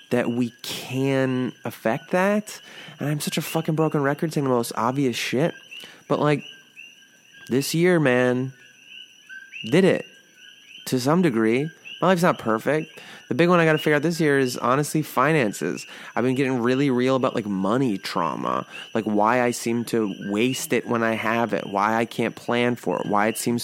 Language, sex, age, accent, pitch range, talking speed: English, male, 20-39, American, 110-135 Hz, 185 wpm